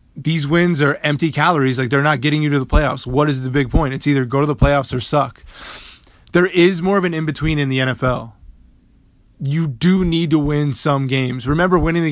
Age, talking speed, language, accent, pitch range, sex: 20-39, 230 wpm, English, American, 130-160 Hz, male